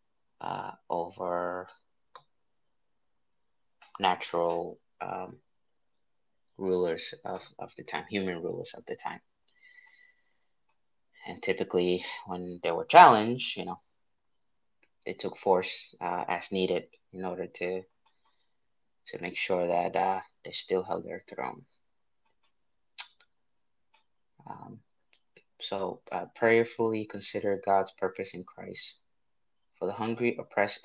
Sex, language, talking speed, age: male, English, 105 wpm, 30-49